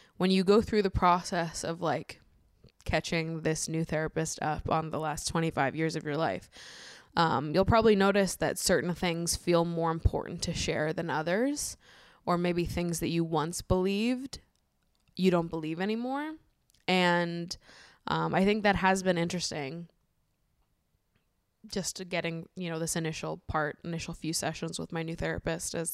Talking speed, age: 160 wpm, 20-39